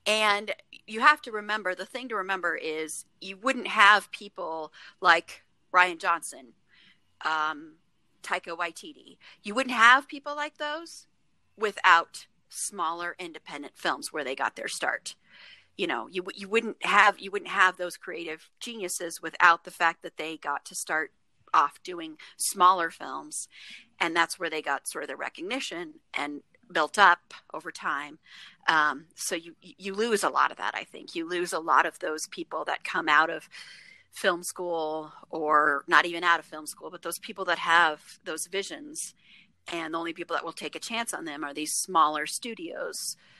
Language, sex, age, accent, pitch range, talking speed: English, female, 40-59, American, 165-215 Hz, 175 wpm